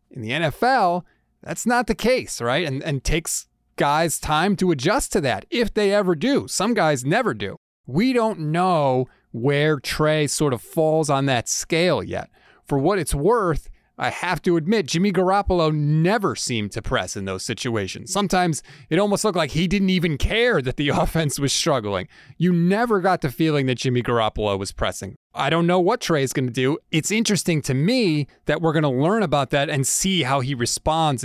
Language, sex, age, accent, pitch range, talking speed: English, male, 30-49, American, 130-175 Hz, 195 wpm